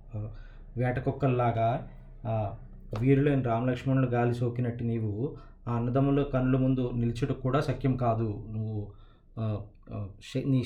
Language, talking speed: Telugu, 85 wpm